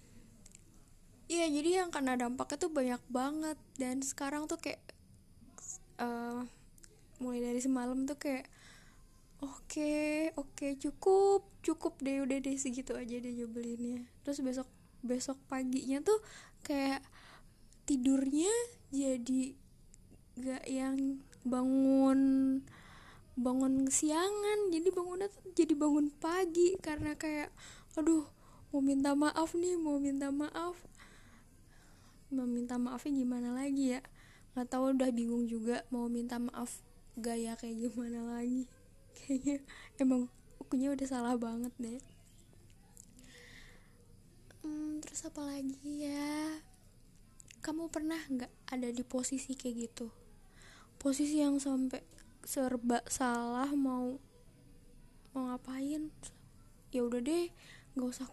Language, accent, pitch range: Indonesian, native, 245-295 Hz